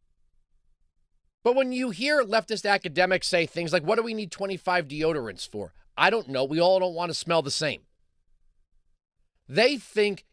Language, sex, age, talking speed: English, male, 40-59, 170 wpm